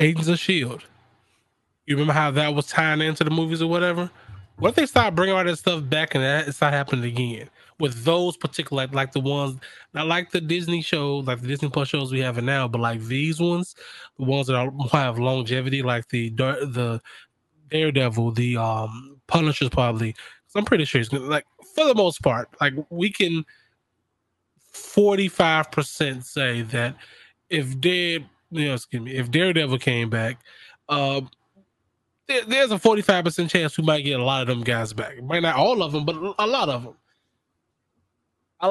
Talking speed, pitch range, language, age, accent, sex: 185 wpm, 125-165 Hz, English, 20-39, American, male